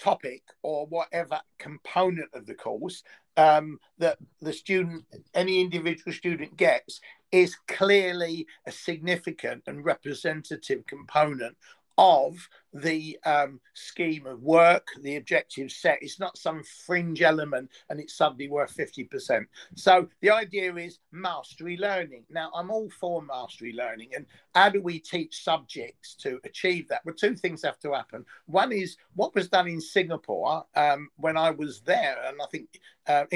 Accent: British